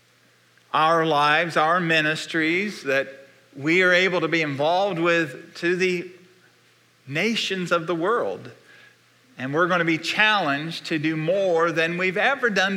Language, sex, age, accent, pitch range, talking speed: English, male, 50-69, American, 150-185 Hz, 145 wpm